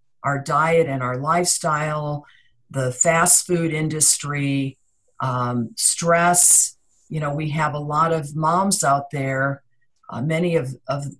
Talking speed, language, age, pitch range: 130 wpm, English, 50-69, 135-170 Hz